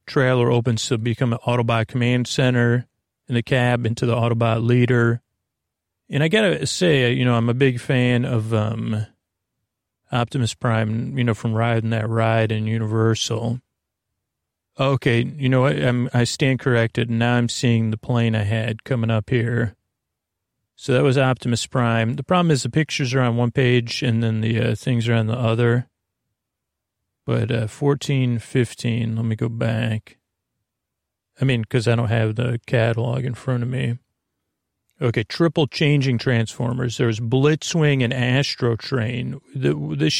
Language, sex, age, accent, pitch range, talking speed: English, male, 30-49, American, 115-130 Hz, 165 wpm